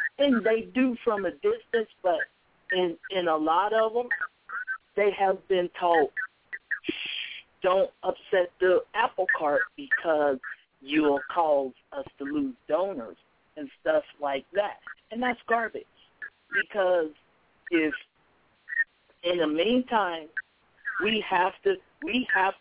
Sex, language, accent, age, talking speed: male, English, American, 50-69, 125 wpm